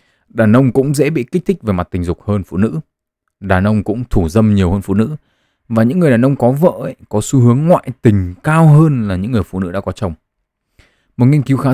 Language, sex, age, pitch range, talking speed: Vietnamese, male, 20-39, 90-125 Hz, 250 wpm